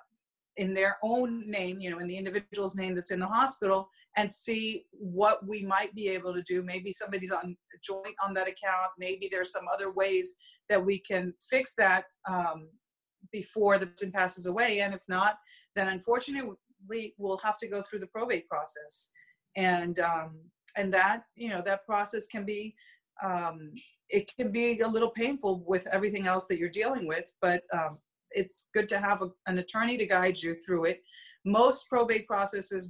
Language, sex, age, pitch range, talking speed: English, female, 40-59, 180-210 Hz, 185 wpm